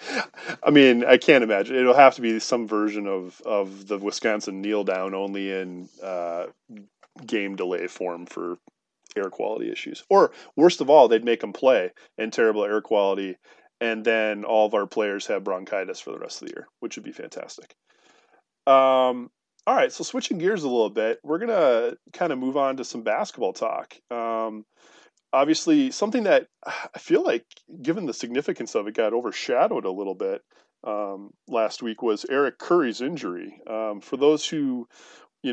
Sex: male